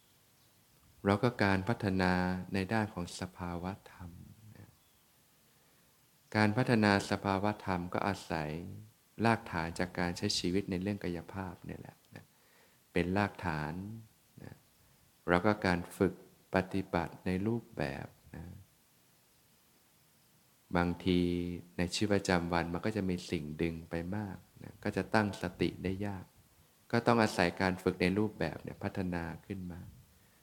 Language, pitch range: Thai, 90-105 Hz